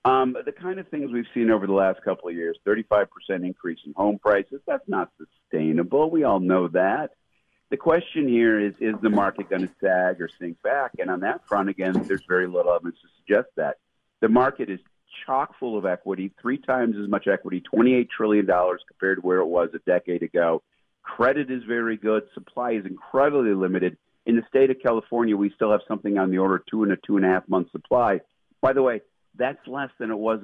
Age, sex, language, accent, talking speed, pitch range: 50-69, male, English, American, 215 wpm, 95-120 Hz